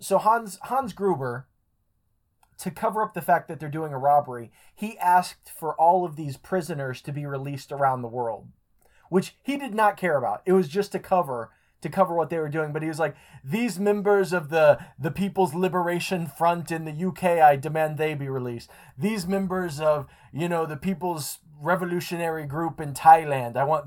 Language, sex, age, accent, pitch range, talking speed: English, male, 20-39, American, 140-180 Hz, 195 wpm